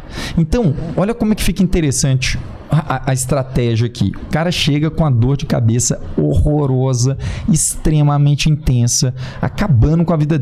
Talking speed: 150 wpm